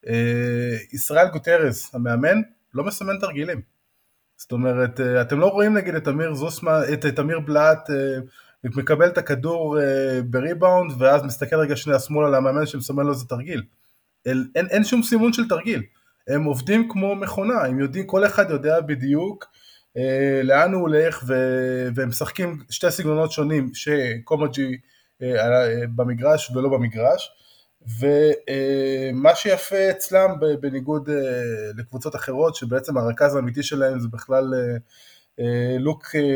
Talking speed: 130 wpm